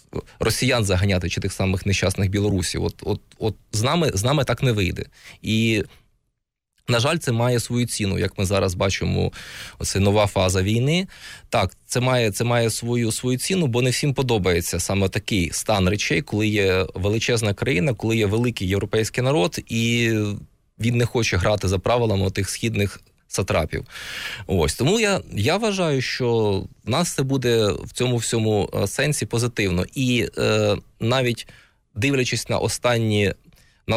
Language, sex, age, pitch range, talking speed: Ukrainian, male, 20-39, 100-120 Hz, 155 wpm